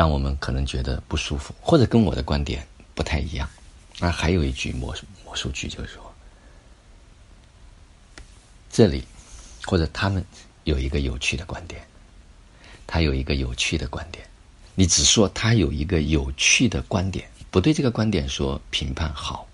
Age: 50-69